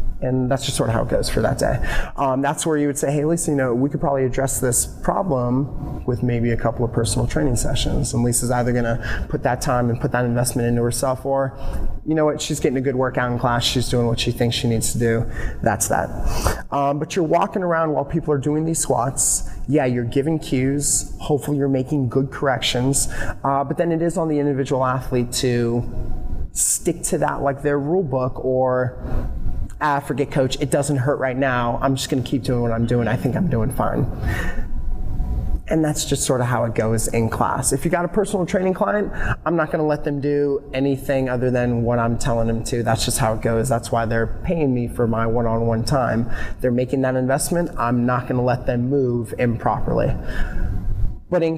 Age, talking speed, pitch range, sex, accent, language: 20-39, 220 wpm, 120-145 Hz, male, American, English